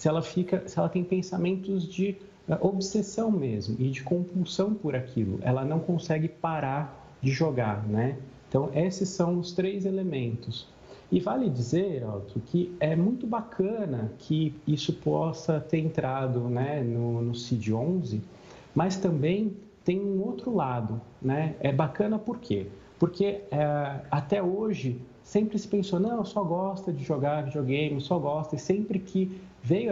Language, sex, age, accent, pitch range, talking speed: Portuguese, male, 40-59, Brazilian, 135-190 Hz, 145 wpm